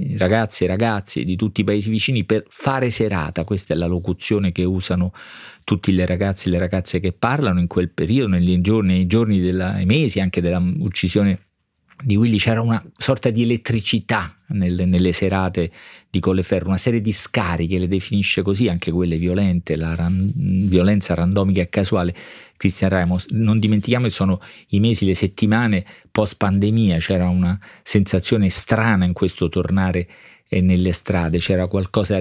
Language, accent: Italian, native